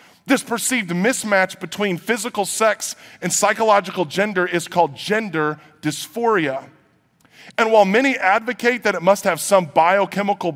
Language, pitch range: English, 150-205 Hz